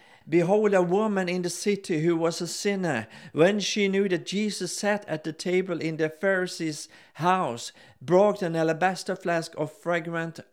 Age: 50-69